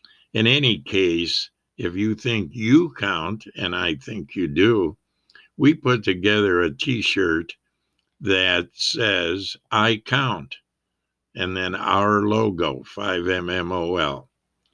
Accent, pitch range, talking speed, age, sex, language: American, 95-115 Hz, 110 wpm, 60-79, male, English